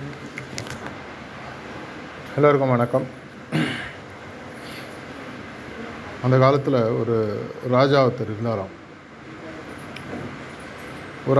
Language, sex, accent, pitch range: Tamil, male, native, 120-140 Hz